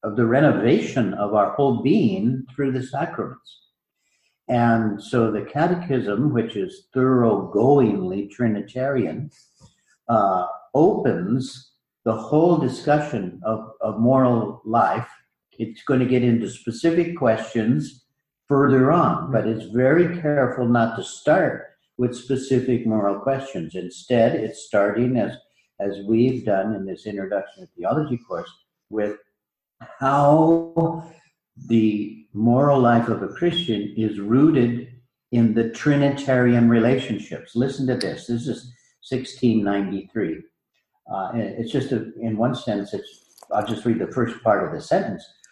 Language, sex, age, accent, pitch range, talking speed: English, male, 60-79, American, 110-135 Hz, 125 wpm